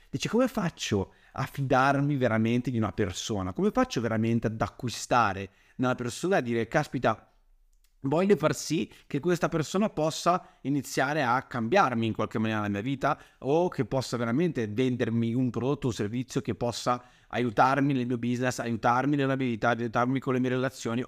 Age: 30-49